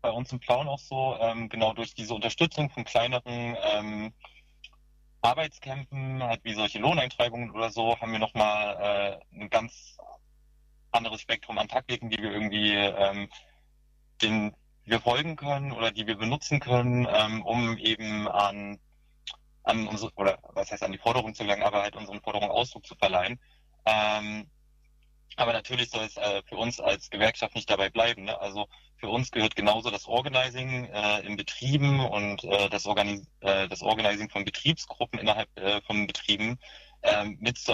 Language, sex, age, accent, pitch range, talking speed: German, male, 20-39, German, 100-120 Hz, 155 wpm